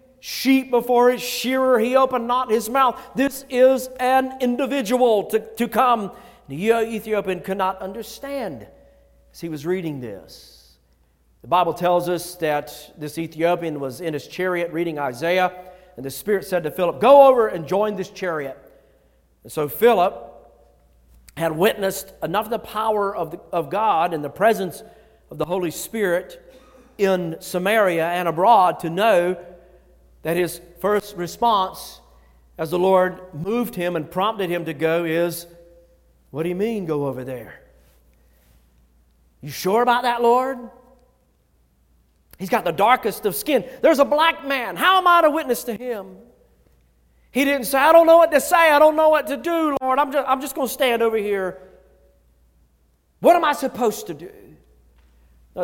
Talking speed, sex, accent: 165 wpm, male, American